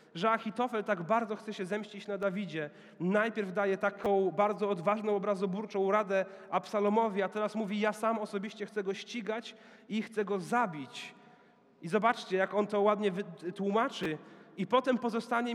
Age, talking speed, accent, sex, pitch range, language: 30-49, 155 wpm, native, male, 170-215 Hz, Polish